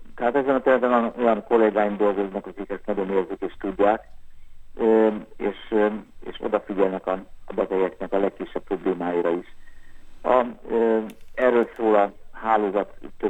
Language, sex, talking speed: Hungarian, male, 125 wpm